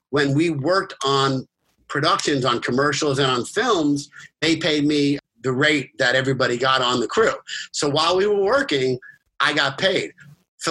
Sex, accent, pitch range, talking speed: male, American, 135-160 Hz, 170 wpm